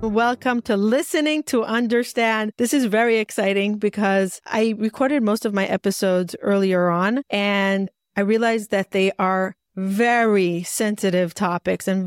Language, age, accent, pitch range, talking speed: English, 30-49, American, 195-240 Hz, 140 wpm